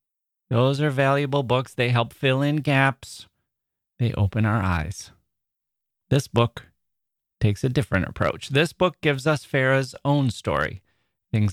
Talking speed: 140 wpm